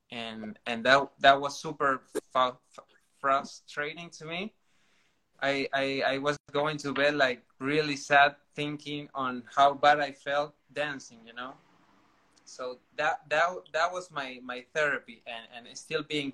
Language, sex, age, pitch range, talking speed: English, male, 20-39, 125-150 Hz, 150 wpm